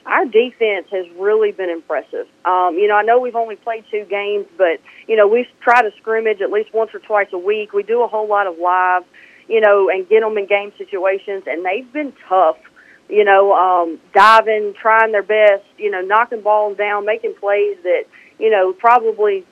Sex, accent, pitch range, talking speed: female, American, 195-255 Hz, 205 wpm